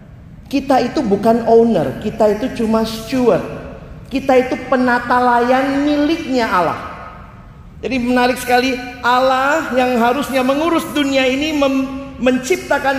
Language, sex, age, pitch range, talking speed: Indonesian, male, 40-59, 200-265 Hz, 110 wpm